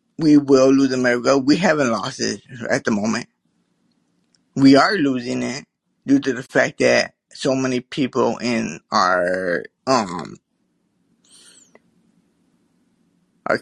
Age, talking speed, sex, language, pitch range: 20-39, 120 wpm, male, English, 125-150 Hz